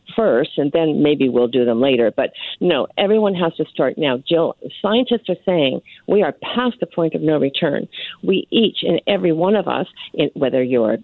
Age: 50-69